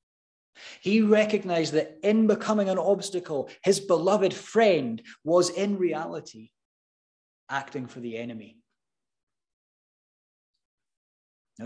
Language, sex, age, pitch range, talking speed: English, male, 30-49, 140-195 Hz, 95 wpm